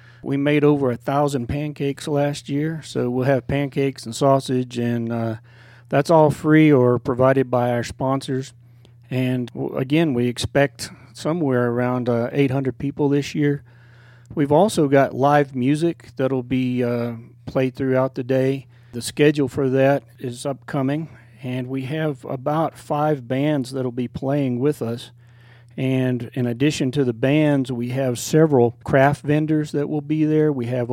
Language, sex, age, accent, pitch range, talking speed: English, male, 40-59, American, 120-145 Hz, 160 wpm